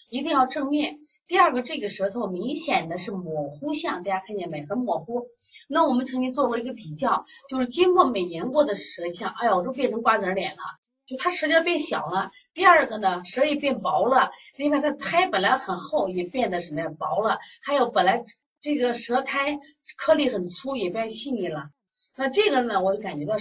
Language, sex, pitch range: Chinese, female, 210-325 Hz